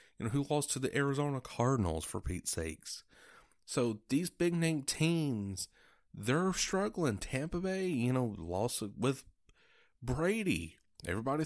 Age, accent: 30-49, American